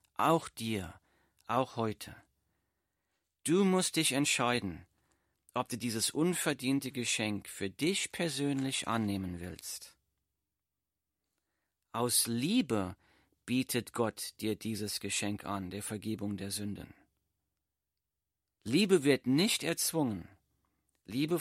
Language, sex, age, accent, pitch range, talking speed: German, male, 40-59, German, 95-145 Hz, 100 wpm